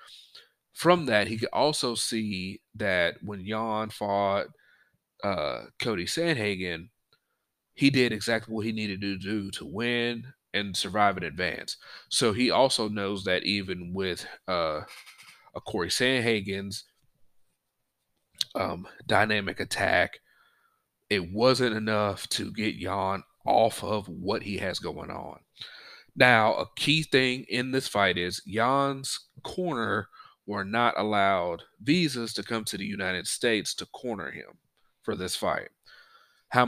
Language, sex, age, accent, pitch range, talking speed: English, male, 30-49, American, 100-125 Hz, 135 wpm